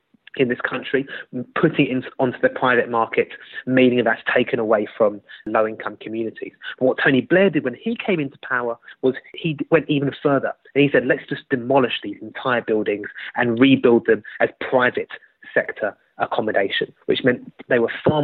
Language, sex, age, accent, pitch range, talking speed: English, male, 20-39, British, 110-140 Hz, 180 wpm